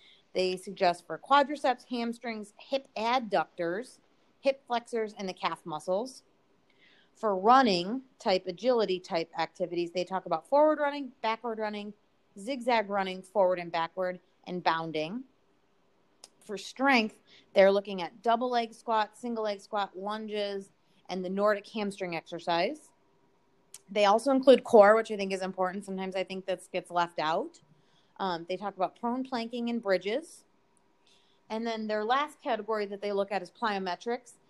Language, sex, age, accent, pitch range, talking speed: English, female, 30-49, American, 180-215 Hz, 150 wpm